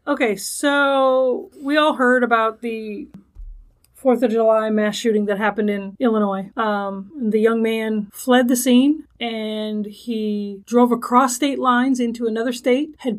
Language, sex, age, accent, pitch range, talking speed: English, female, 30-49, American, 220-260 Hz, 150 wpm